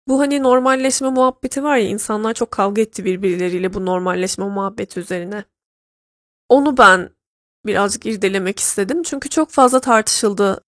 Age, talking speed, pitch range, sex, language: 10-29, 135 wpm, 195-230 Hz, female, Turkish